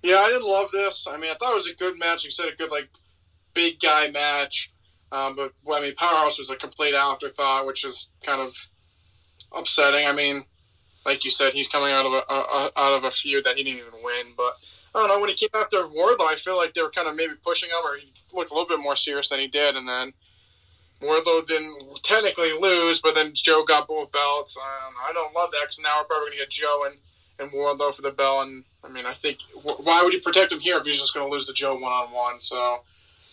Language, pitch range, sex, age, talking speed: English, 135-170 Hz, male, 20-39, 260 wpm